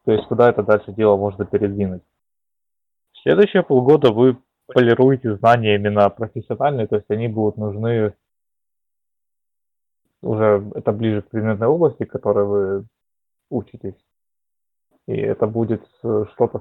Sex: male